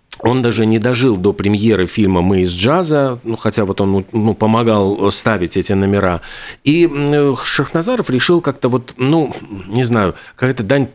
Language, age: Russian, 40-59